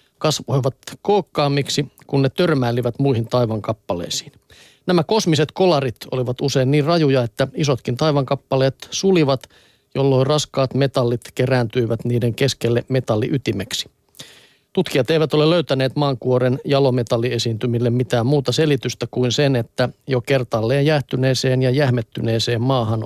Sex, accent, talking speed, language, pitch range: male, native, 110 wpm, Finnish, 125-145 Hz